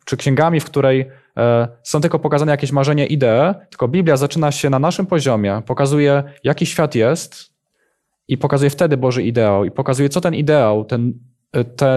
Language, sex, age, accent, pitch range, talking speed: Polish, male, 20-39, native, 120-145 Hz, 165 wpm